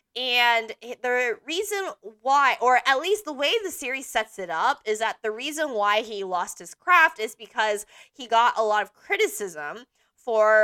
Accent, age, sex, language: American, 20-39, female, English